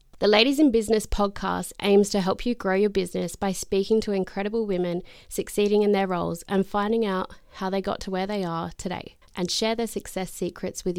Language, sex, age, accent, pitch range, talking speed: English, female, 20-39, Australian, 180-210 Hz, 210 wpm